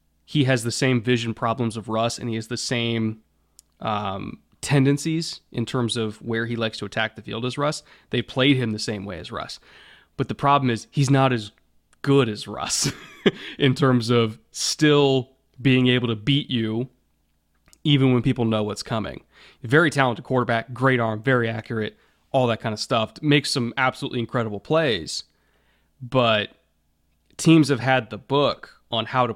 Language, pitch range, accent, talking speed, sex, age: English, 110-125 Hz, American, 175 wpm, male, 20-39